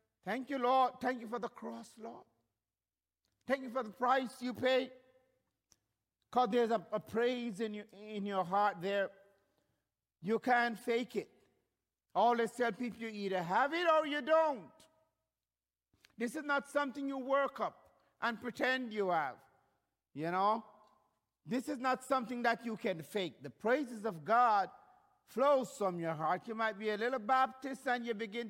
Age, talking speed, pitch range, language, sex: 50-69, 165 wpm, 195-260 Hz, English, male